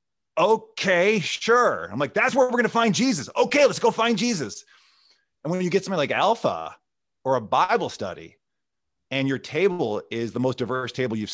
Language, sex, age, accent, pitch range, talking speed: English, male, 30-49, American, 100-135 Hz, 185 wpm